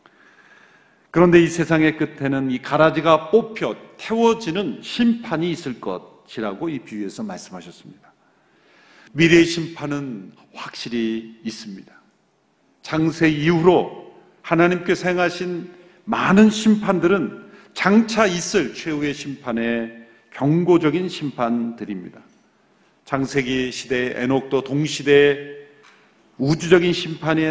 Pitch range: 125-175 Hz